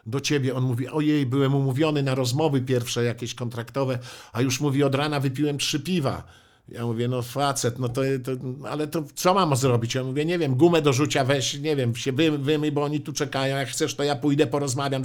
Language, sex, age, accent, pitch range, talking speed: Polish, male, 50-69, native, 135-165 Hz, 215 wpm